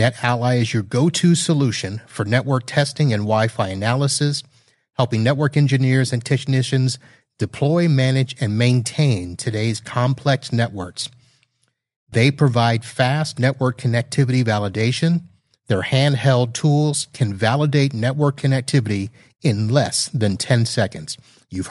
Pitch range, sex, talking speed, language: 115-135 Hz, male, 115 wpm, English